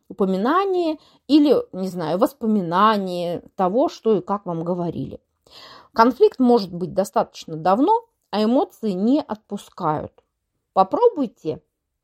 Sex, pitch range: female, 180-265 Hz